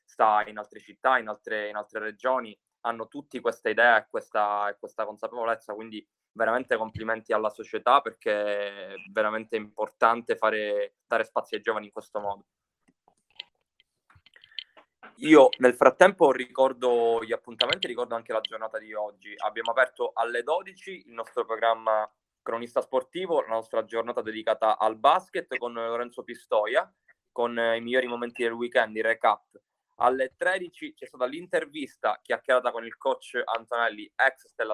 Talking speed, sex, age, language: 145 wpm, male, 20-39, Italian